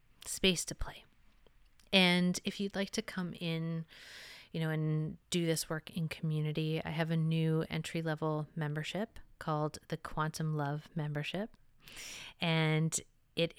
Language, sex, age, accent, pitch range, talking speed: English, female, 30-49, American, 155-175 Hz, 135 wpm